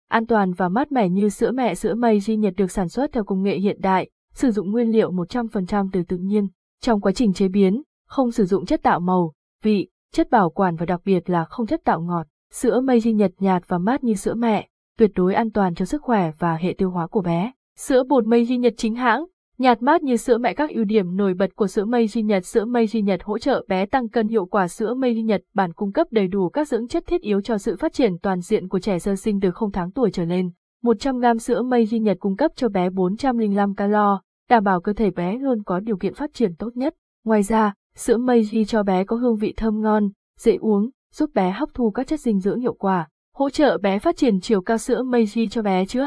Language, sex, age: Vietnamese, female, 20-39